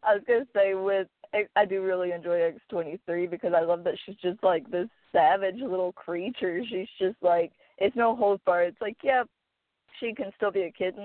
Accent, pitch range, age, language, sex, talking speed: American, 175-200 Hz, 20-39, English, female, 205 wpm